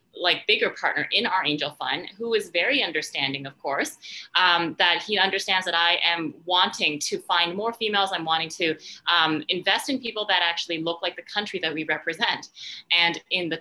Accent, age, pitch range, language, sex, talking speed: American, 30-49, 170-215 Hz, English, female, 195 wpm